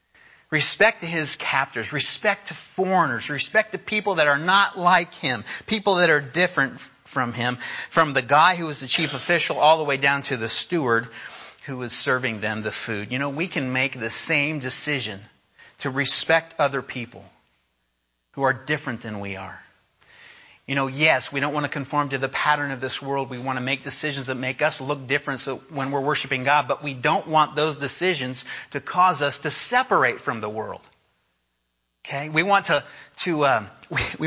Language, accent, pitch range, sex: English, American, 130-175 Hz, male